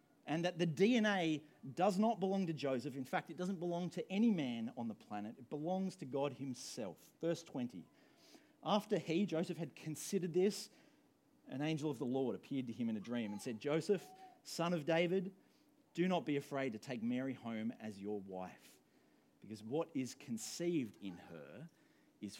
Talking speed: 180 wpm